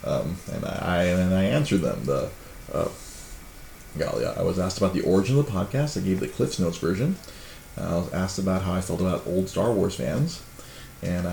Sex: male